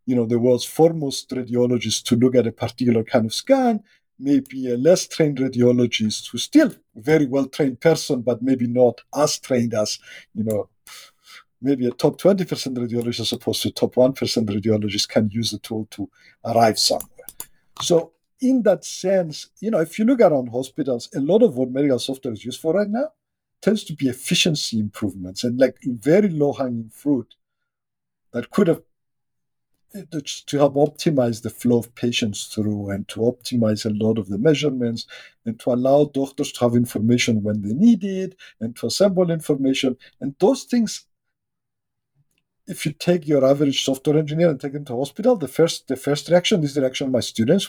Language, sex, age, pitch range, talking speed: English, male, 50-69, 120-165 Hz, 180 wpm